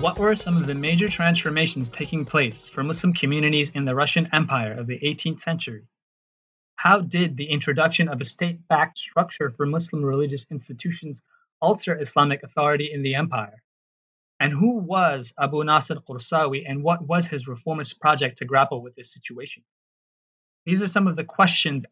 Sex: male